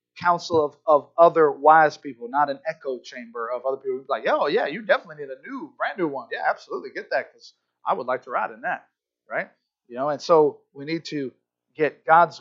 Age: 30-49